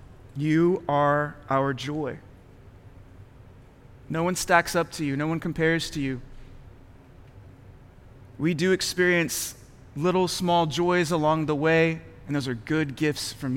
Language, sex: English, male